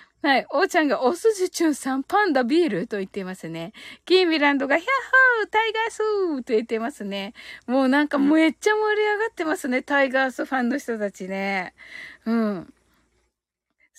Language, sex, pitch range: Japanese, female, 215-345 Hz